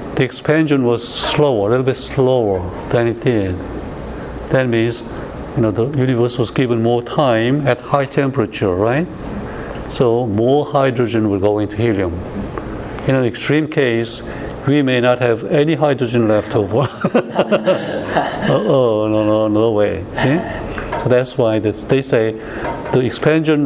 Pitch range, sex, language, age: 110-140 Hz, male, Korean, 60-79